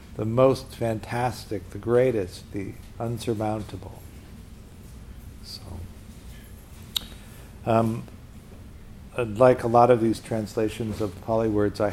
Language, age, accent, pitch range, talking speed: English, 60-79, American, 100-125 Hz, 90 wpm